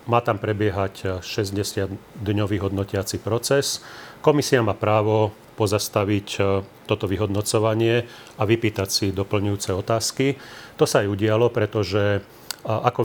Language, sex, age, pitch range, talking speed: Slovak, male, 40-59, 100-115 Hz, 105 wpm